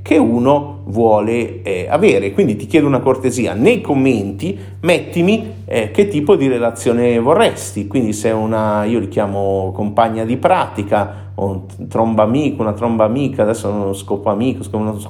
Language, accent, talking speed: Italian, native, 165 wpm